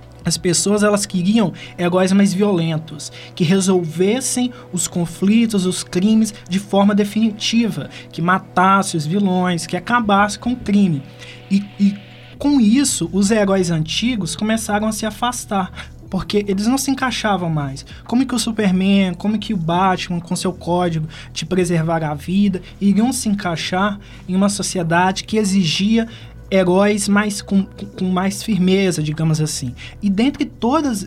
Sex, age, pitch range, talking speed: male, 20-39, 175-215 Hz, 150 wpm